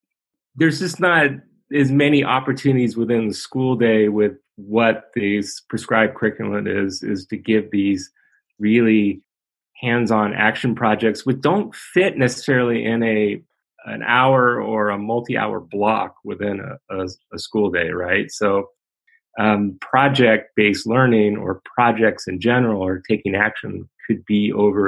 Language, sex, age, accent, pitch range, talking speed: English, male, 30-49, American, 100-125 Hz, 145 wpm